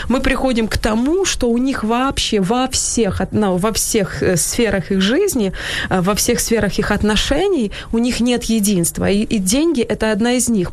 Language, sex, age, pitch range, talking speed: Ukrainian, female, 20-39, 200-240 Hz, 180 wpm